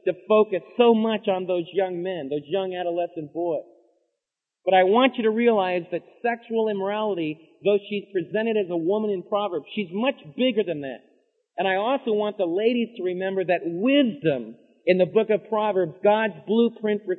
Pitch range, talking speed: 190-230 Hz, 180 wpm